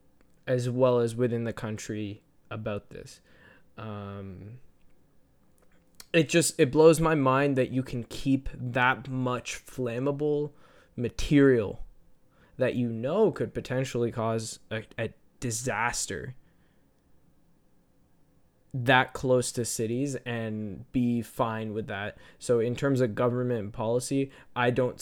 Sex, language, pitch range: male, English, 110-130 Hz